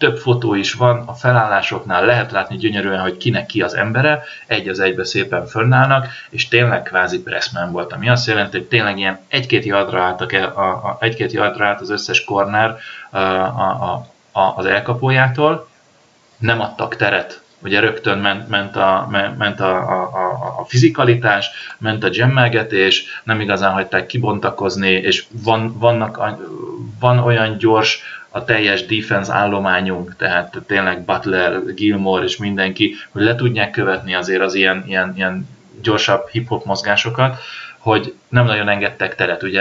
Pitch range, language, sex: 95-120 Hz, Hungarian, male